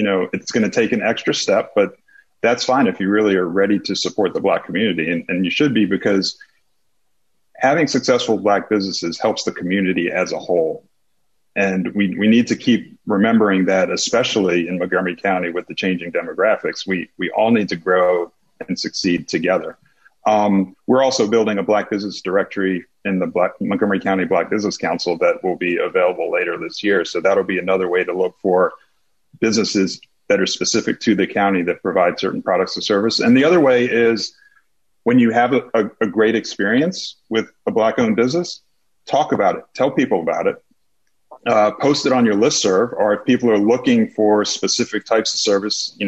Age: 40-59